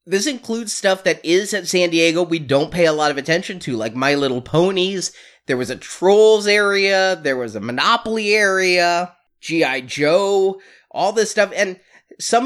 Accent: American